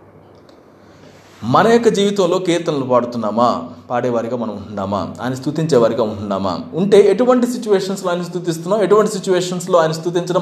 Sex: male